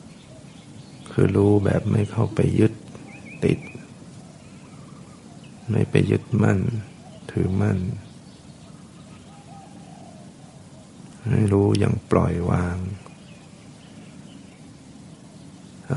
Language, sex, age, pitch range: Thai, male, 60-79, 100-120 Hz